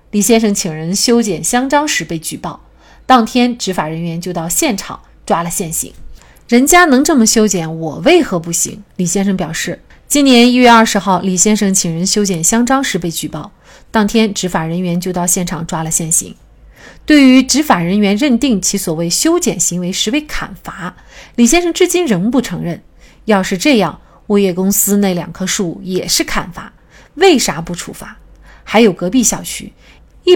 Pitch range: 175-245 Hz